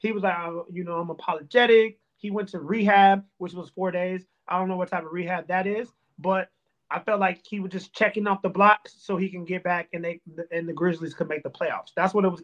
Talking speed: 260 wpm